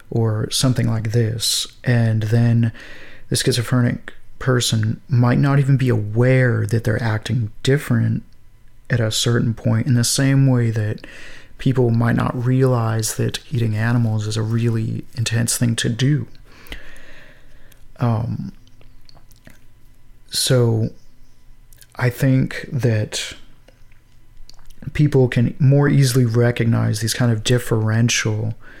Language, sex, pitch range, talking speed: English, male, 115-125 Hz, 115 wpm